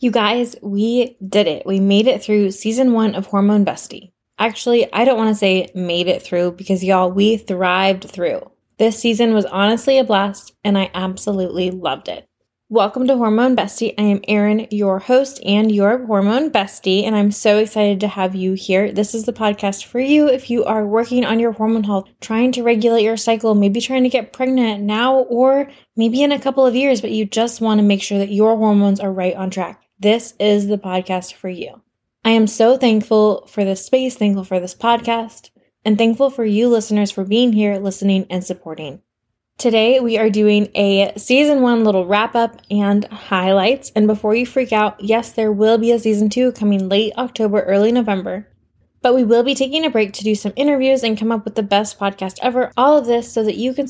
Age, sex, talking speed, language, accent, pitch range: 20-39, female, 205 wpm, English, American, 200-235 Hz